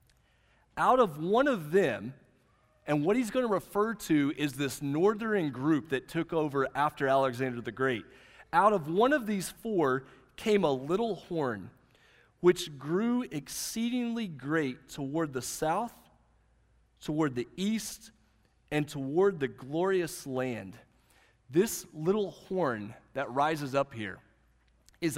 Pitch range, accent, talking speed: 140-210 Hz, American, 135 wpm